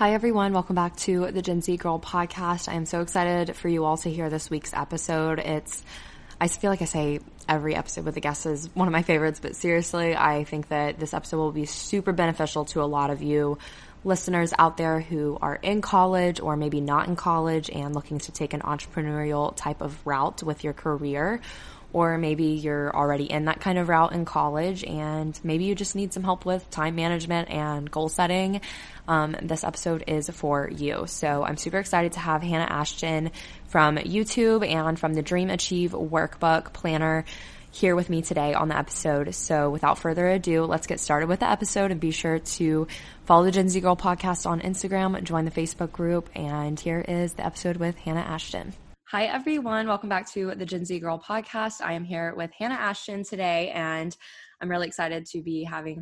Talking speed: 205 wpm